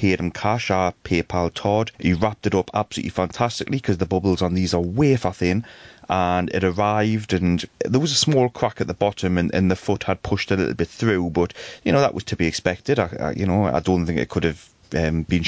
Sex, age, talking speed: male, 30-49, 235 wpm